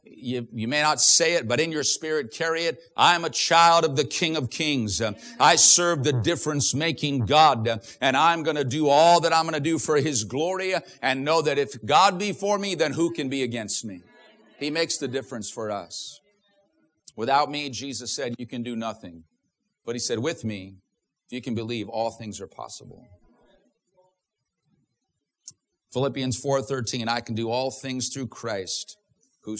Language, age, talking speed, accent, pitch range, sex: English, 50-69, 185 wpm, American, 110-155 Hz, male